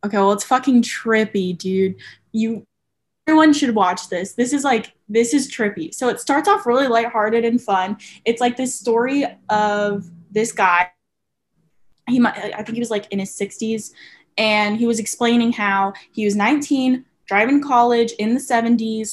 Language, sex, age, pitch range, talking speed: English, female, 10-29, 205-255 Hz, 175 wpm